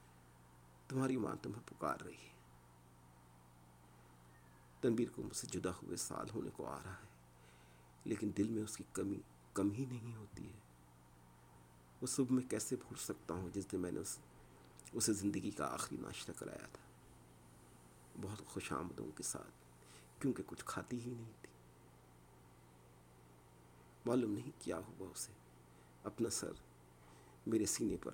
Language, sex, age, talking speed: Urdu, male, 50-69, 145 wpm